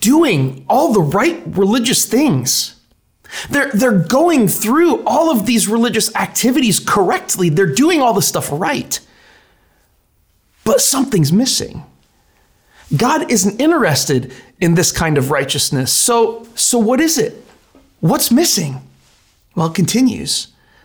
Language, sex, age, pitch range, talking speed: English, male, 30-49, 145-220 Hz, 125 wpm